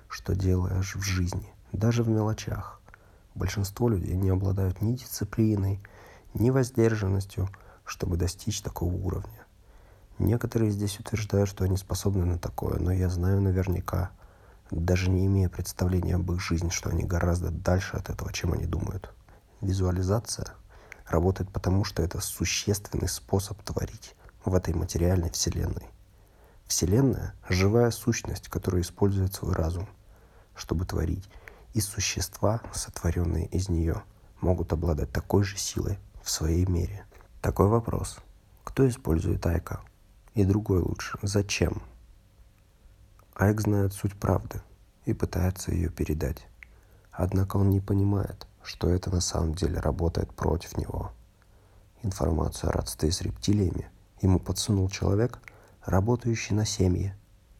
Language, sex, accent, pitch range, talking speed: Russian, male, native, 90-100 Hz, 125 wpm